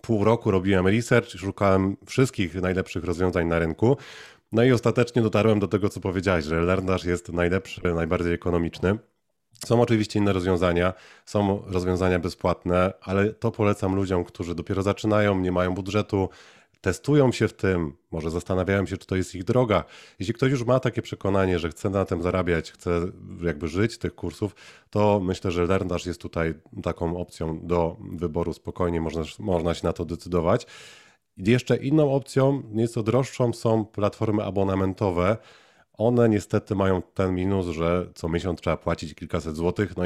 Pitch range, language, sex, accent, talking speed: 90-105 Hz, Polish, male, native, 160 wpm